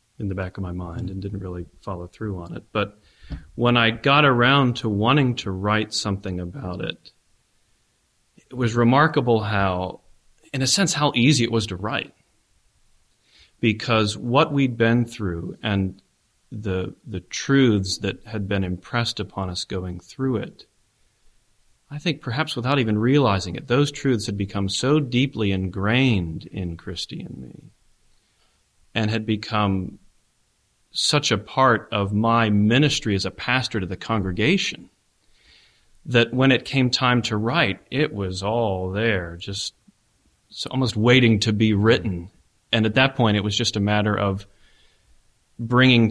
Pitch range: 95-120 Hz